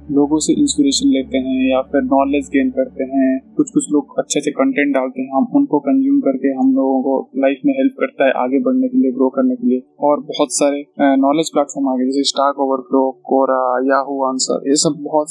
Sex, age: male, 20-39